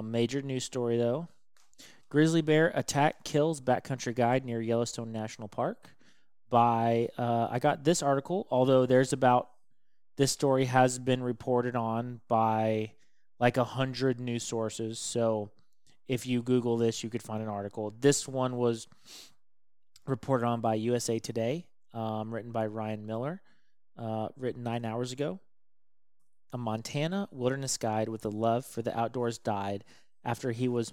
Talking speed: 150 wpm